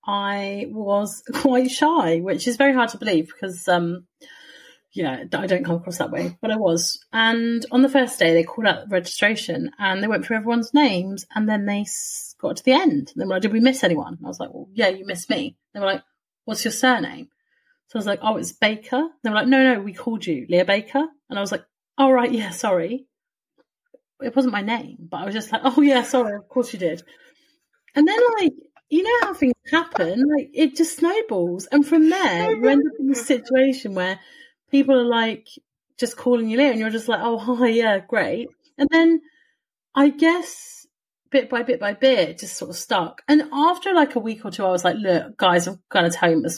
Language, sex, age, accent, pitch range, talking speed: English, female, 30-49, British, 195-285 Hz, 230 wpm